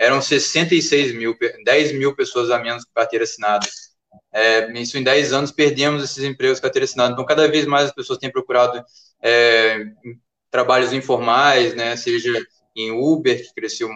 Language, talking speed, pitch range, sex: Portuguese, 165 wpm, 115-150 Hz, male